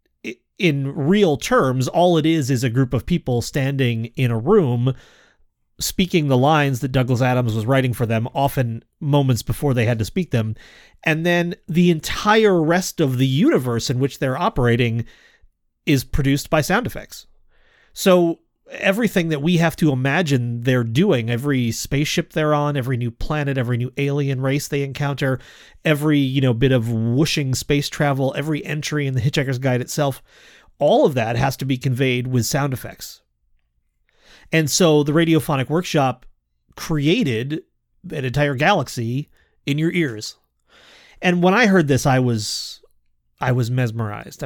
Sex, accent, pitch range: male, American, 120-155 Hz